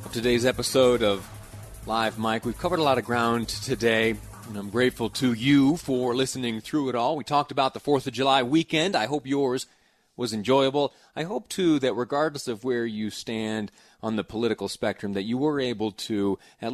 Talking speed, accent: 195 wpm, American